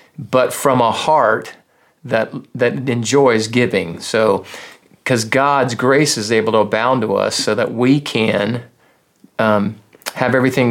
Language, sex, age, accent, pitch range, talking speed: English, male, 40-59, American, 115-145 Hz, 140 wpm